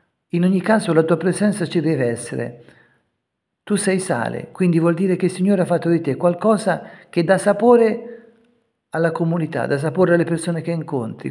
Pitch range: 130-180 Hz